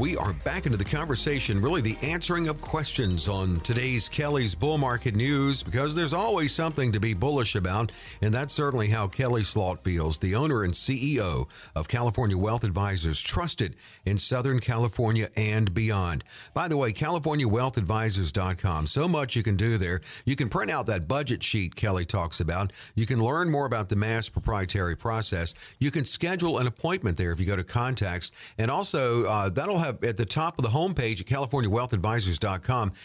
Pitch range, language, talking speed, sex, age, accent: 105-140 Hz, English, 180 wpm, male, 50-69, American